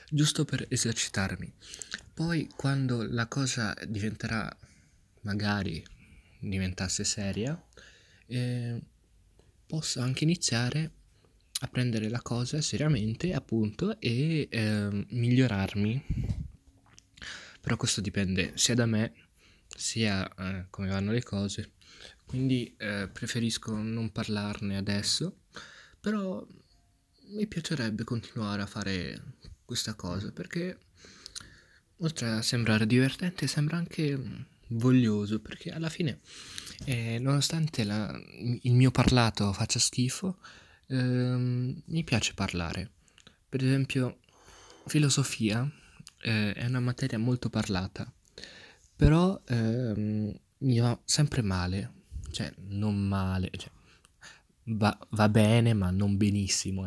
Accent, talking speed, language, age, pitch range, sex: native, 100 wpm, Italian, 20-39, 100-130 Hz, male